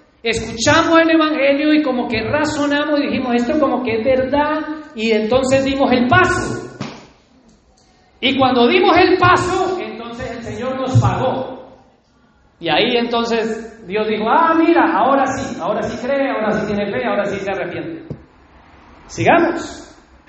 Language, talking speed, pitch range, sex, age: Spanish, 150 wpm, 180-280 Hz, male, 40-59